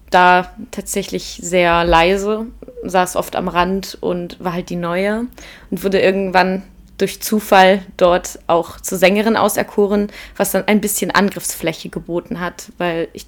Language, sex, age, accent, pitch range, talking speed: German, female, 20-39, German, 180-210 Hz, 145 wpm